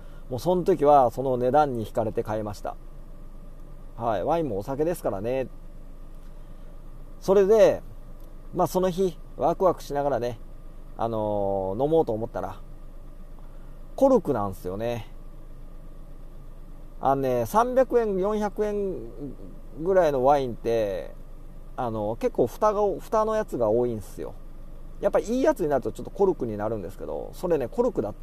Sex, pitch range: male, 125-195 Hz